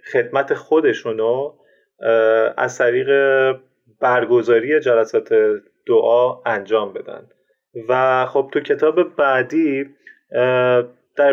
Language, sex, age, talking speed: Persian, male, 30-49, 80 wpm